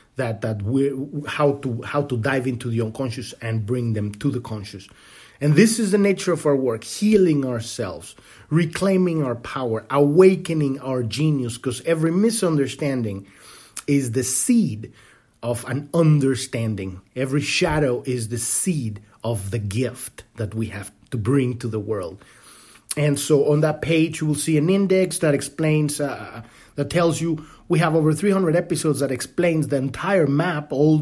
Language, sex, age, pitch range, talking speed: English, male, 30-49, 120-155 Hz, 165 wpm